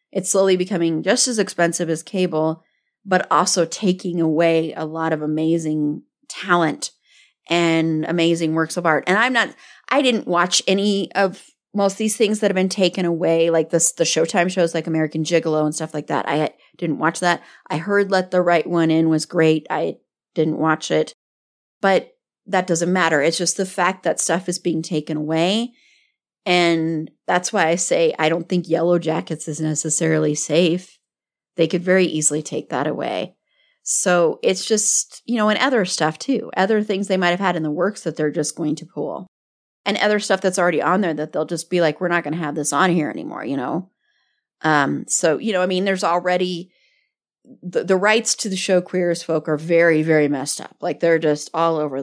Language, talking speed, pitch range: English, 200 wpm, 160-190 Hz